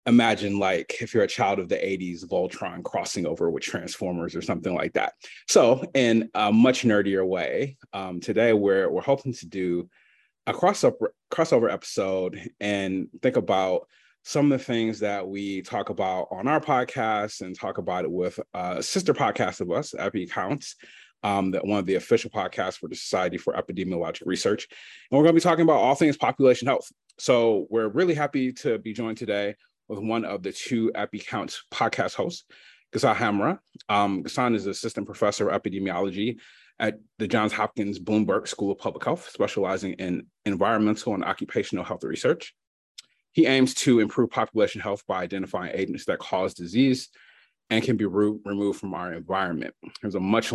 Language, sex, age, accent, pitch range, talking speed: English, male, 30-49, American, 95-115 Hz, 175 wpm